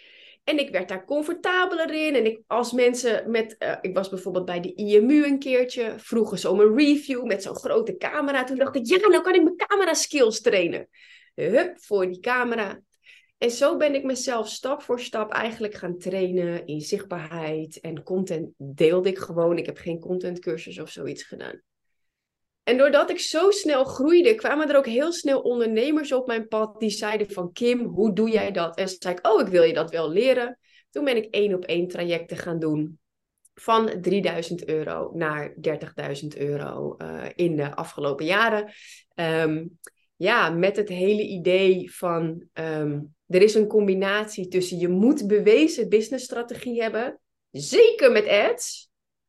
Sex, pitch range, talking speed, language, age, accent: female, 180-275 Hz, 170 wpm, Dutch, 30-49, Dutch